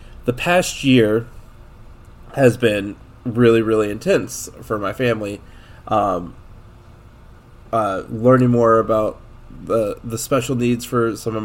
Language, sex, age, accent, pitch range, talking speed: English, male, 20-39, American, 105-125 Hz, 120 wpm